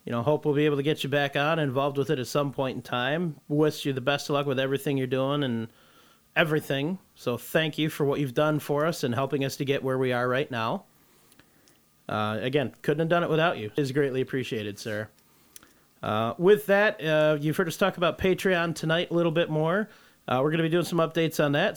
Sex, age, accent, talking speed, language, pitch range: male, 30-49, American, 245 wpm, English, 140-170 Hz